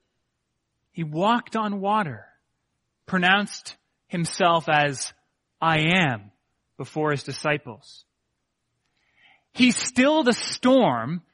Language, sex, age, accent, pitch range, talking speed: English, male, 30-49, American, 145-215 Hz, 85 wpm